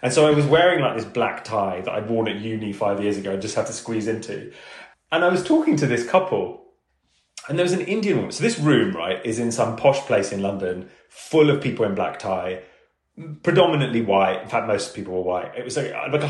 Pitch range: 110-175 Hz